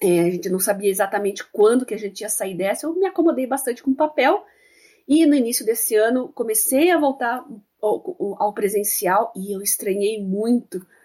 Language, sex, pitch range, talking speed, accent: Portuguese, female, 205-320 Hz, 185 wpm, Brazilian